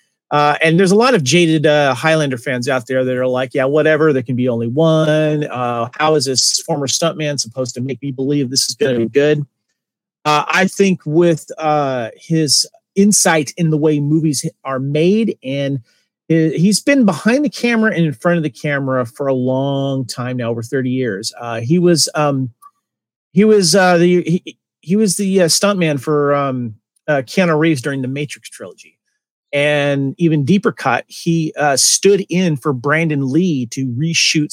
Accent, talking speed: American, 195 wpm